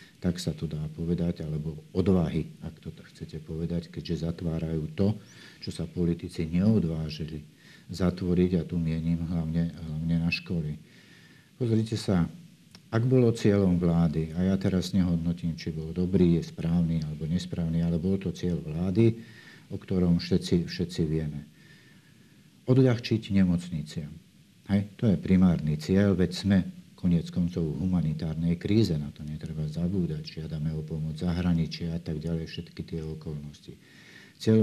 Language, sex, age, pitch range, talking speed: Slovak, male, 50-69, 80-95 Hz, 145 wpm